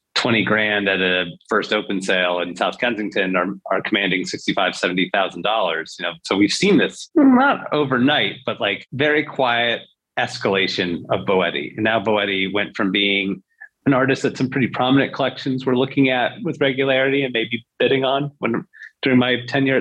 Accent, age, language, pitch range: American, 30-49, English, 105-130 Hz